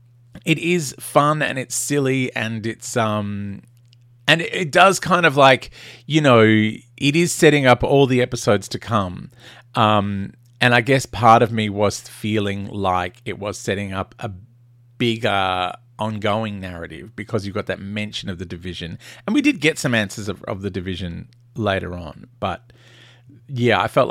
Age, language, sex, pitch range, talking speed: 30-49, English, male, 100-125 Hz, 170 wpm